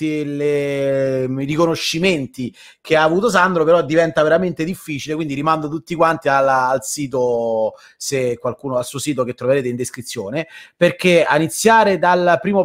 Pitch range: 145-195 Hz